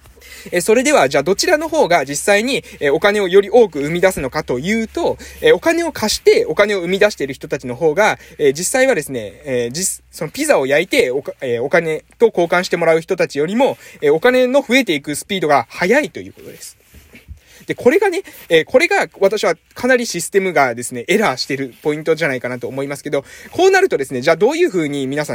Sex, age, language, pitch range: male, 20-39, Japanese, 145-245 Hz